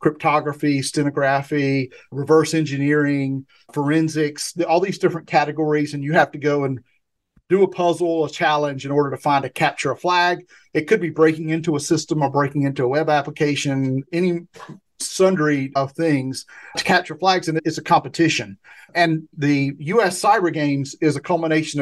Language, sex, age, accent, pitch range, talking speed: English, male, 40-59, American, 140-165 Hz, 165 wpm